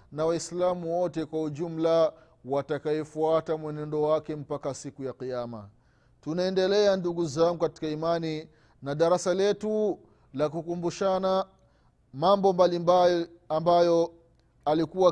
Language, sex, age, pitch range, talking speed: Swahili, male, 30-49, 150-185 Hz, 105 wpm